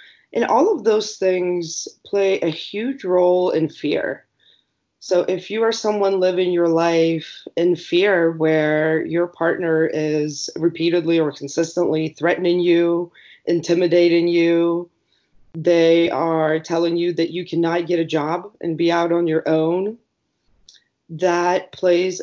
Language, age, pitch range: English, 20-39, 160-185 Hz